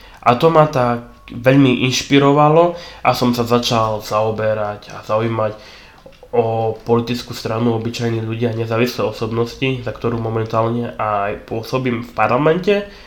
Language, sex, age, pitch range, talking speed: Slovak, male, 20-39, 115-130 Hz, 130 wpm